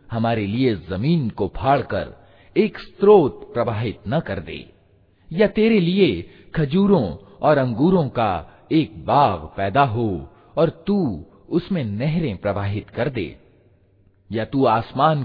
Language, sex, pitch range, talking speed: Hindi, male, 95-145 Hz, 125 wpm